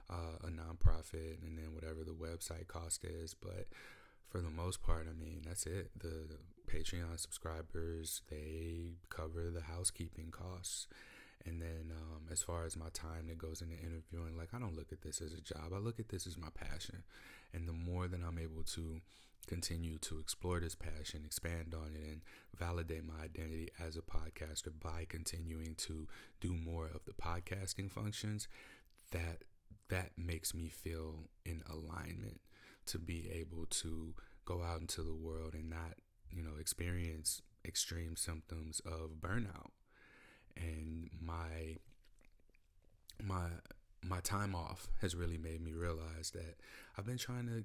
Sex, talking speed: male, 160 wpm